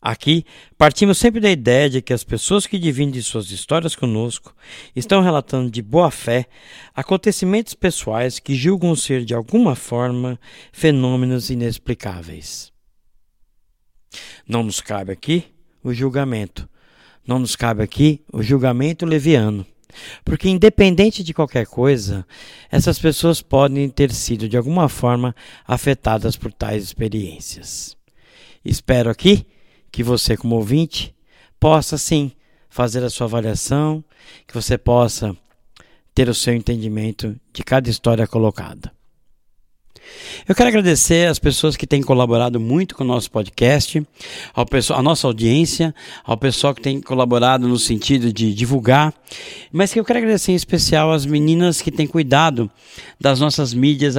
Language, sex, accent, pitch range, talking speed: Portuguese, male, Brazilian, 115-155 Hz, 135 wpm